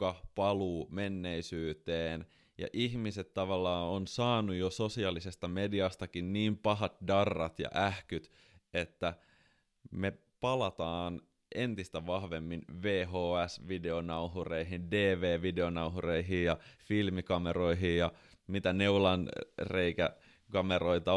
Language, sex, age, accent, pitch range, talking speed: Finnish, male, 30-49, native, 85-100 Hz, 75 wpm